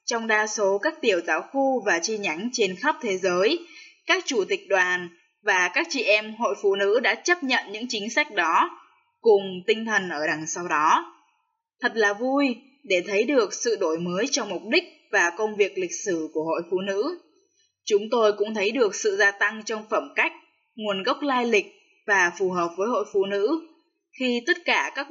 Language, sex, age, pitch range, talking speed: Vietnamese, female, 10-29, 195-315 Hz, 205 wpm